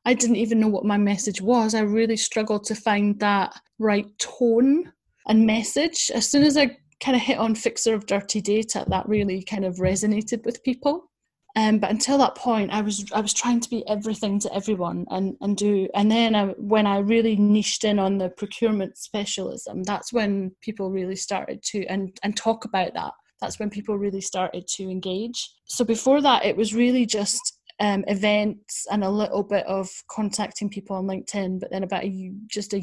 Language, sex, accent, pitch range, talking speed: English, female, British, 195-225 Hz, 200 wpm